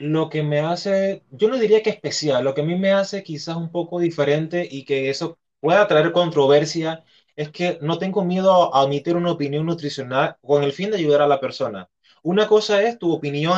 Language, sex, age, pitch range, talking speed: Spanish, male, 20-39, 140-180 Hz, 210 wpm